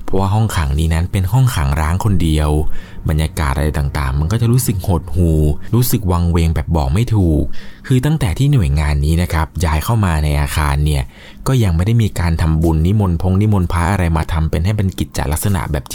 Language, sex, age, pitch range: Thai, male, 20-39, 80-105 Hz